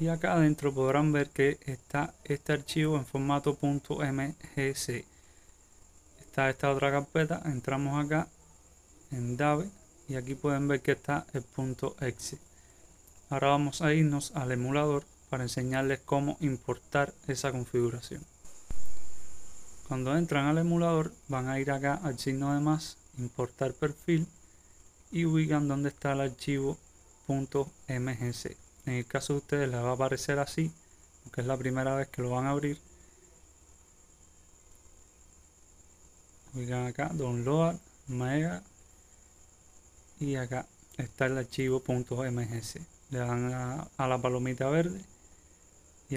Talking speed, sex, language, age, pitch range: 130 wpm, male, English, 30-49, 110-145 Hz